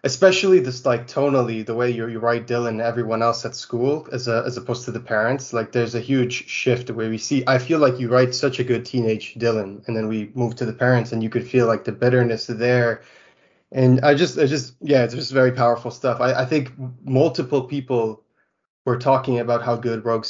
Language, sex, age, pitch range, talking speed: English, male, 20-39, 115-135 Hz, 230 wpm